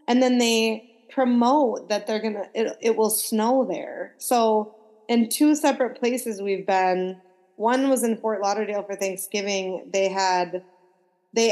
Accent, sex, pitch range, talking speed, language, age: American, female, 205-255 Hz, 150 wpm, English, 20-39